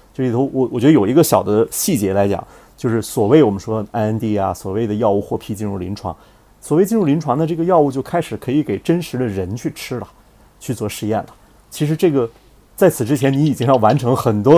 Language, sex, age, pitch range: Chinese, male, 30-49, 100-130 Hz